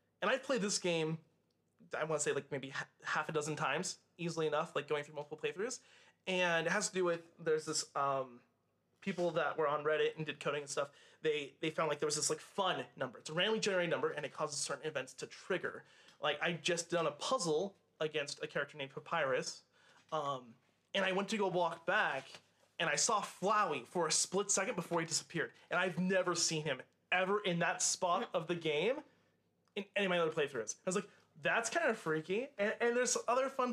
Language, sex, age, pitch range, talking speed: English, male, 30-49, 155-205 Hz, 220 wpm